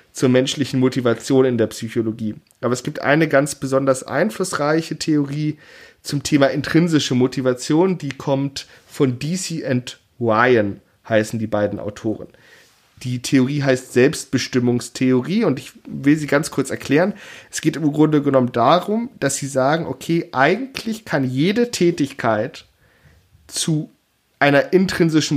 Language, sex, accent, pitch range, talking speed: German, male, German, 120-150 Hz, 130 wpm